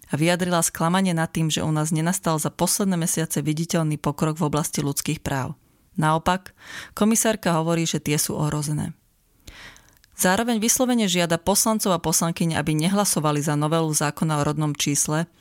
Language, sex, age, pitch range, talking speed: Slovak, female, 30-49, 150-185 Hz, 150 wpm